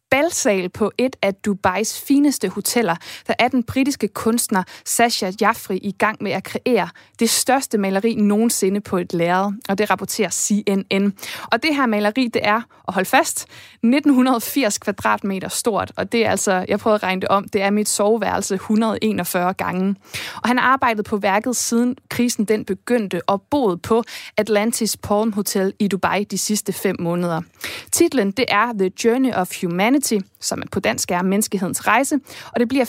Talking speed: 175 wpm